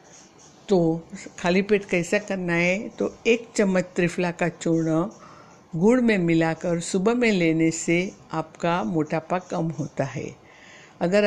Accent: native